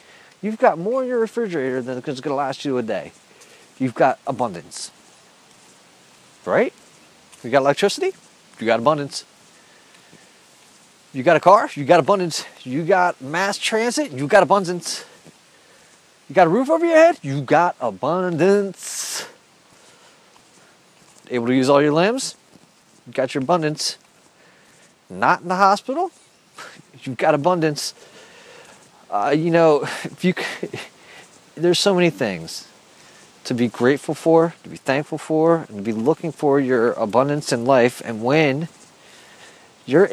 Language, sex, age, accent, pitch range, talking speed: English, male, 30-49, American, 135-180 Hz, 140 wpm